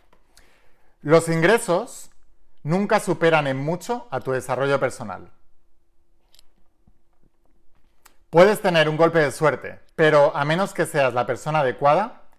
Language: Spanish